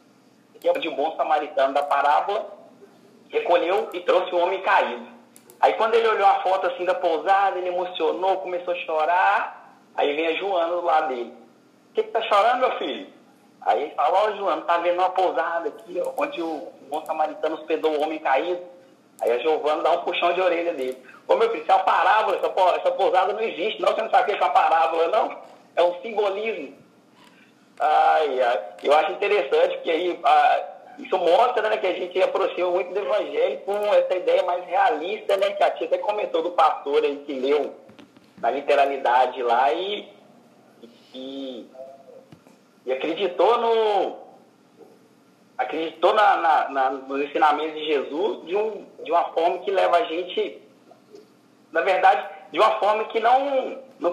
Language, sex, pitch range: Portuguese, male, 160-245 Hz